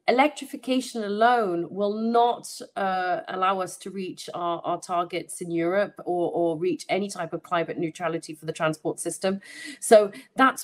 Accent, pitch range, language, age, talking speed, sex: British, 180-235 Hz, English, 30-49, 160 wpm, female